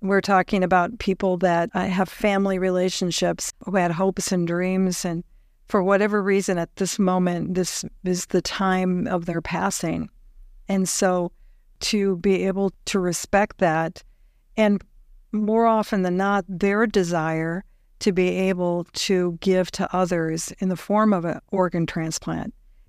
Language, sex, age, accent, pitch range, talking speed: English, female, 50-69, American, 180-200 Hz, 145 wpm